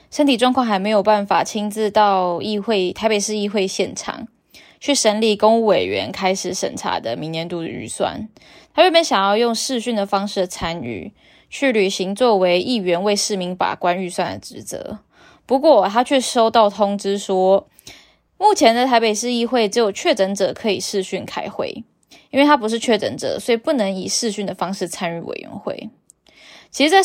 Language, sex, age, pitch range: Chinese, female, 10-29, 195-245 Hz